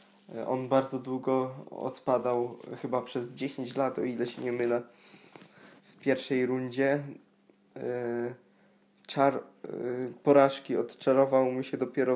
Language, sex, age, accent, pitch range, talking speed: Polish, male, 20-39, native, 120-135 Hz, 105 wpm